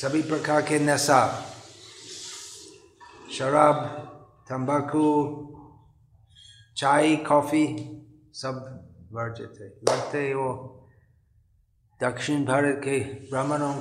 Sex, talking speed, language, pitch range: male, 70 wpm, Hindi, 120-150 Hz